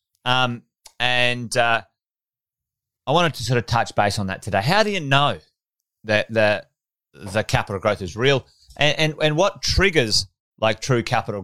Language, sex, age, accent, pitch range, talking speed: English, male, 30-49, Australian, 110-140 Hz, 170 wpm